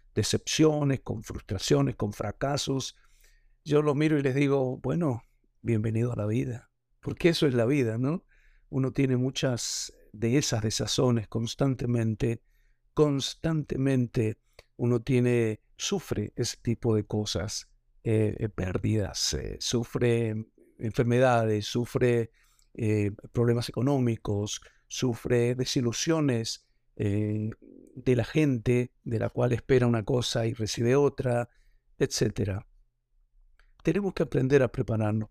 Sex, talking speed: male, 115 wpm